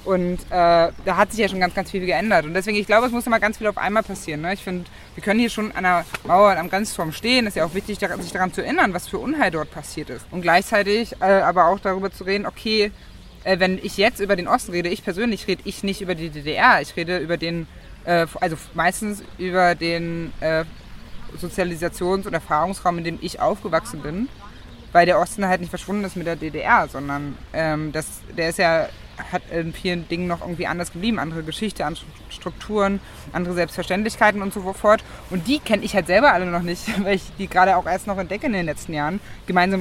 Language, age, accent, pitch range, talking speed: German, 20-39, German, 165-200 Hz, 225 wpm